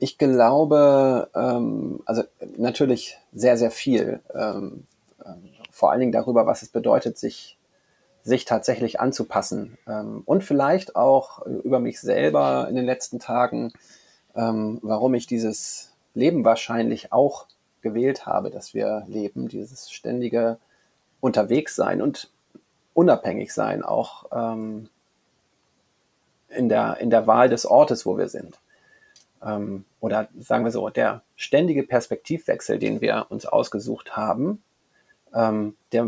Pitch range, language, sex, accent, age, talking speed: 110-130 Hz, German, male, German, 30-49, 115 wpm